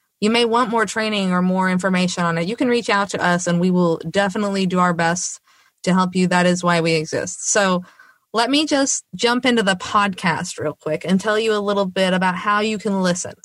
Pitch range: 180-215 Hz